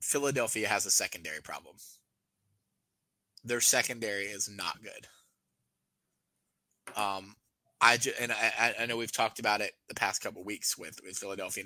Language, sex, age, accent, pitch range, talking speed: English, male, 20-39, American, 100-130 Hz, 145 wpm